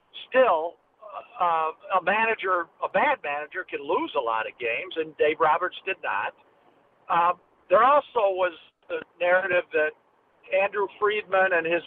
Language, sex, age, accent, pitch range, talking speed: English, male, 50-69, American, 180-275 Hz, 145 wpm